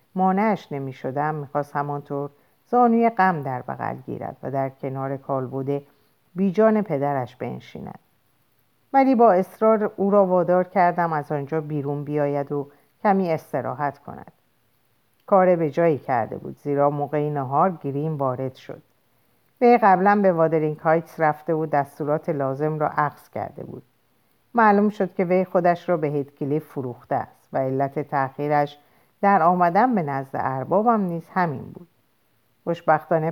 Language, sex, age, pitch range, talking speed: Persian, female, 50-69, 140-180 Hz, 140 wpm